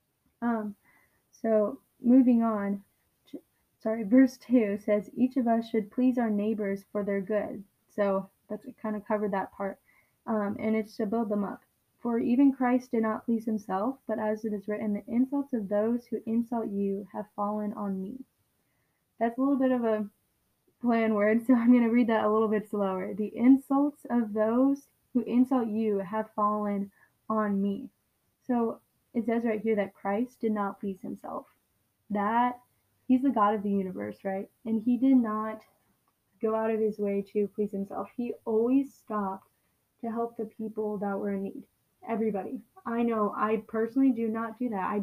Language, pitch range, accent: English, 205-240 Hz, American